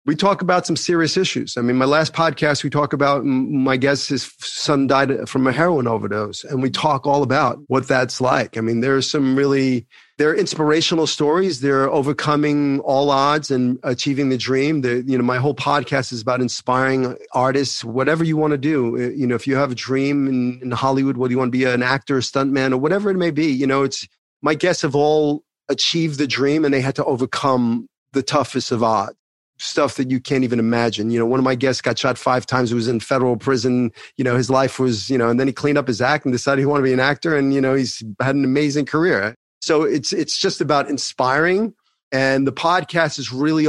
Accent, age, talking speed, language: American, 40-59, 230 wpm, English